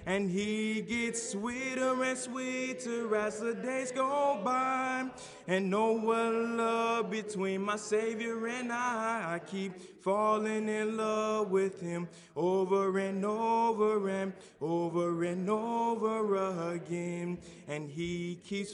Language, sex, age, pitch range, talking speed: English, male, 20-39, 195-230 Hz, 120 wpm